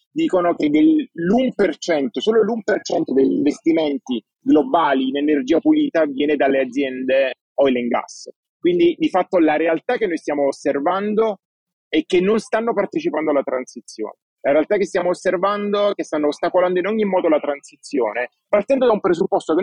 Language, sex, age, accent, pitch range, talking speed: Italian, male, 30-49, native, 155-230 Hz, 160 wpm